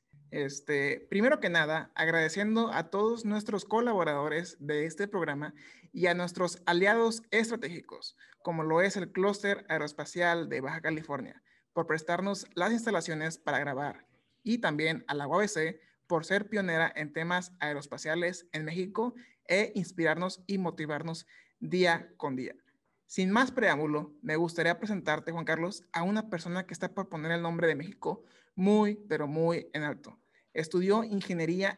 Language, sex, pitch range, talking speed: Spanish, male, 160-200 Hz, 145 wpm